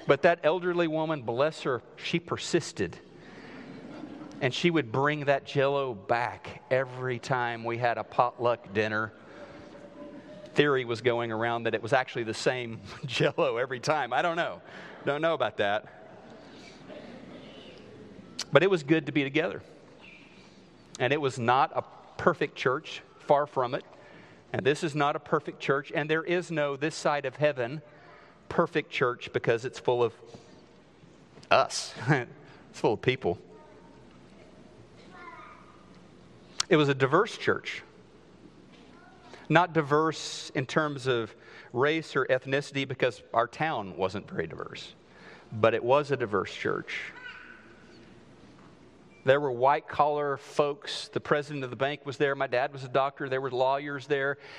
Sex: male